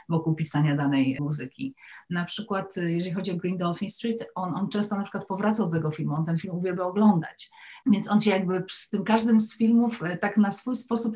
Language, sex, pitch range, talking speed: Polish, female, 170-215 Hz, 210 wpm